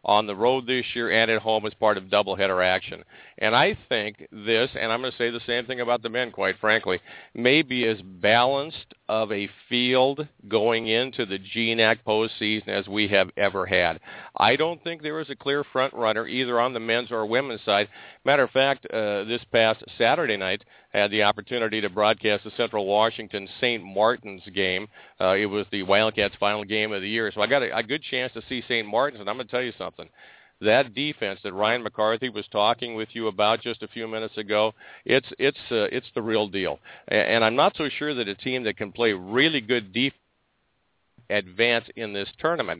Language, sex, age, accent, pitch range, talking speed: English, male, 50-69, American, 105-120 Hz, 210 wpm